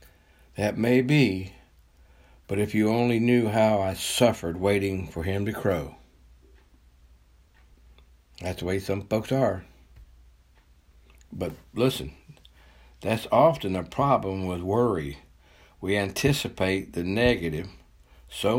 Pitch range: 65-110 Hz